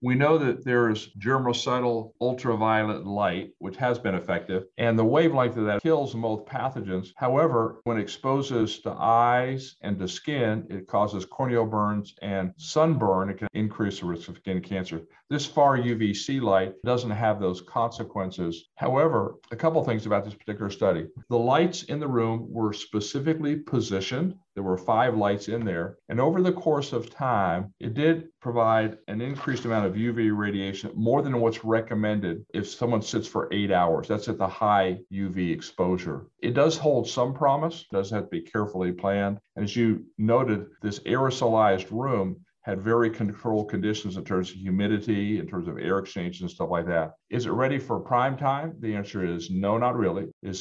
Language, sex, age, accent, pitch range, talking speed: English, male, 50-69, American, 100-125 Hz, 180 wpm